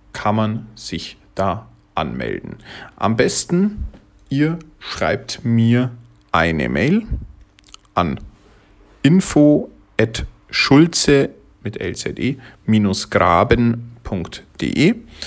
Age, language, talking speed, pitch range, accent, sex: 50-69, German, 65 wpm, 100-130 Hz, German, male